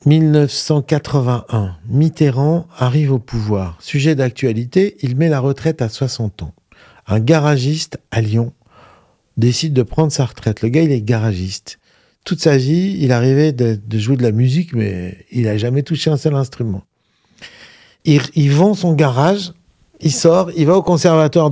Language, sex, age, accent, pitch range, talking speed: French, male, 50-69, French, 115-155 Hz, 160 wpm